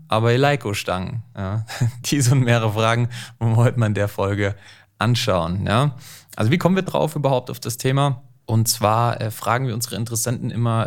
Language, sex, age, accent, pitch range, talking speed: German, male, 20-39, German, 110-130 Hz, 190 wpm